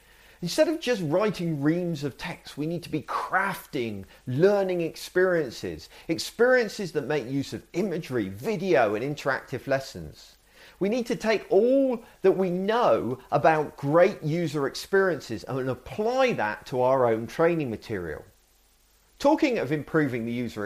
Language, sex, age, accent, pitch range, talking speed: English, male, 40-59, British, 125-200 Hz, 140 wpm